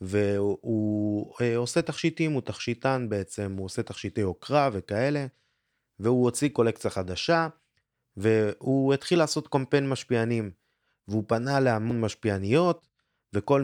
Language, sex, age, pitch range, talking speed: Hebrew, male, 20-39, 100-135 Hz, 115 wpm